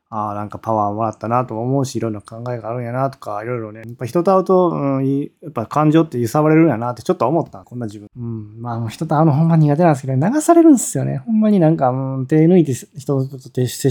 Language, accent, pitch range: Japanese, native, 110-150 Hz